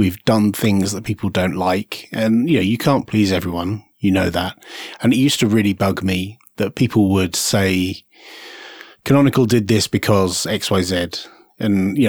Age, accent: 30-49, British